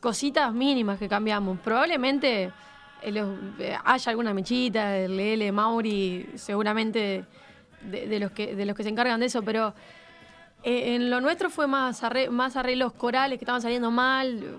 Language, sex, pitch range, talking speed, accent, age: Spanish, female, 220-255 Hz, 155 wpm, Argentinian, 20-39